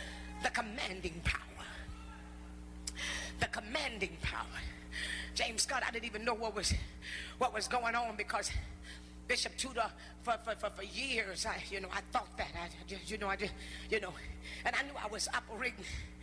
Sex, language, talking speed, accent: female, English, 170 wpm, American